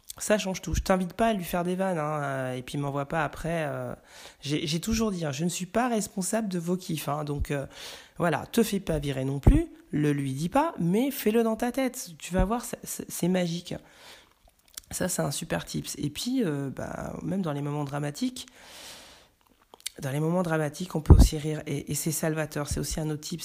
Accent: French